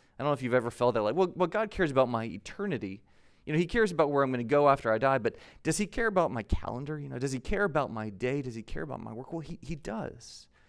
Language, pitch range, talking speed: English, 125-180 Hz, 305 wpm